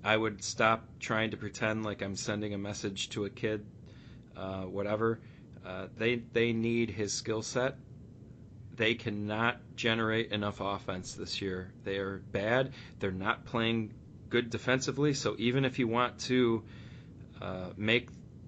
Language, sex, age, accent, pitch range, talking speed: English, male, 30-49, American, 105-120 Hz, 150 wpm